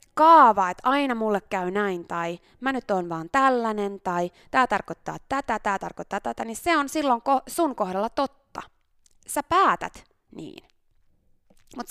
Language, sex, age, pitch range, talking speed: Finnish, female, 20-39, 190-295 Hz, 150 wpm